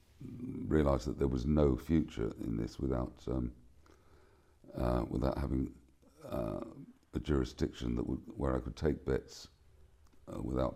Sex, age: male, 50-69